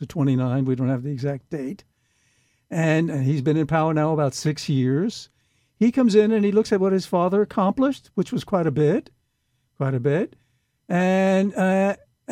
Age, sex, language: 60-79, male, English